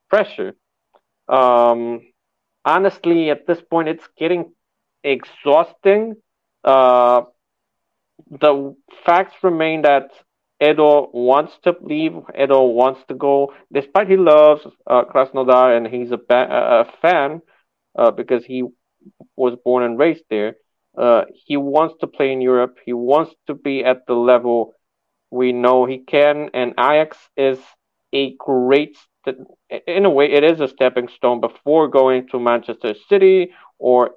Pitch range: 125-155 Hz